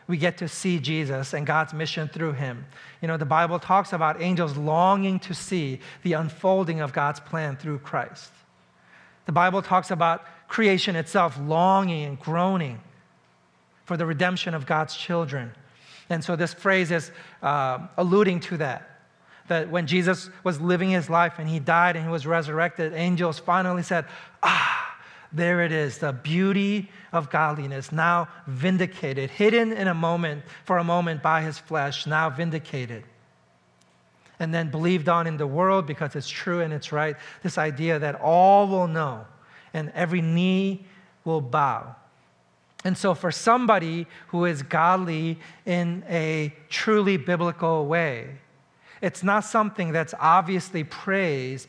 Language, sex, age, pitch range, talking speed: English, male, 40-59, 150-180 Hz, 155 wpm